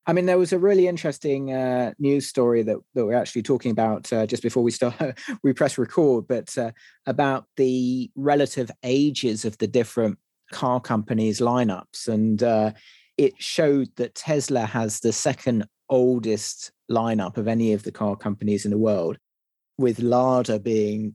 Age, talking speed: 30-49, 165 wpm